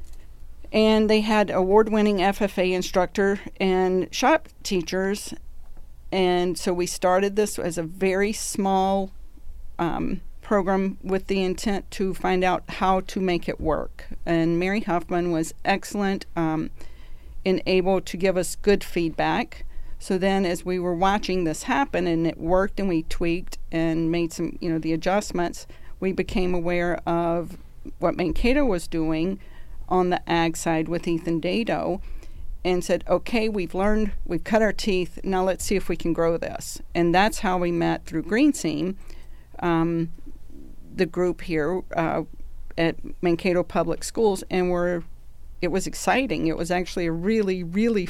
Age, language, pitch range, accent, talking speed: 50-69, English, 170-195 Hz, American, 155 wpm